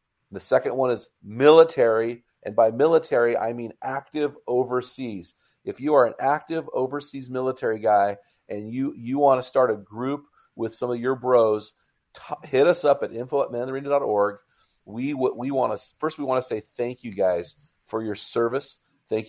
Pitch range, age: 110-130 Hz, 40-59